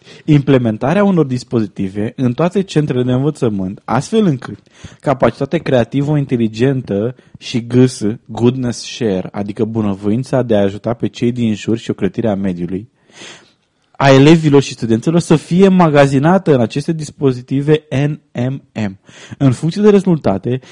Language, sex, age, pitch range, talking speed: English, male, 20-39, 110-150 Hz, 130 wpm